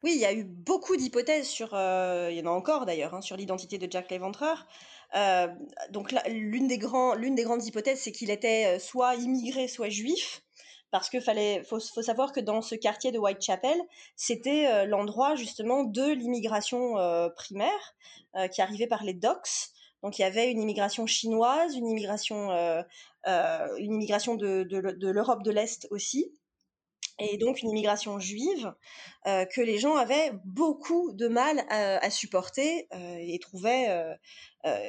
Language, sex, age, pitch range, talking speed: French, female, 20-39, 190-255 Hz, 180 wpm